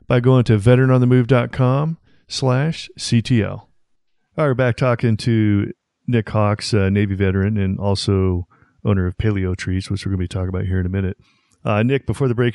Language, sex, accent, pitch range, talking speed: English, male, American, 95-115 Hz, 185 wpm